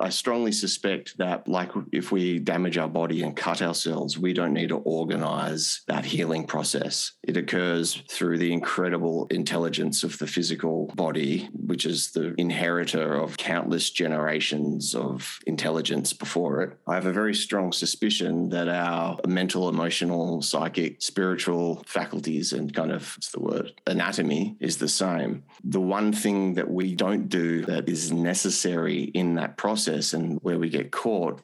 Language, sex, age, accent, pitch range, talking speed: English, male, 30-49, Australian, 85-90 Hz, 160 wpm